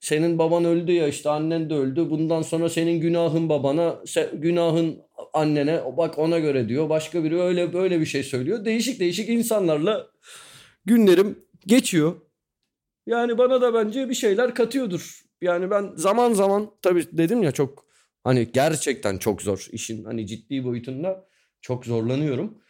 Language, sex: Turkish, male